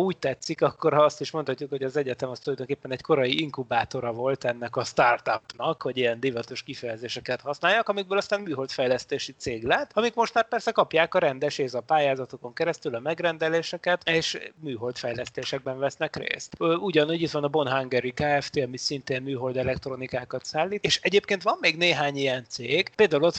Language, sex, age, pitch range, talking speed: Hungarian, male, 30-49, 135-170 Hz, 170 wpm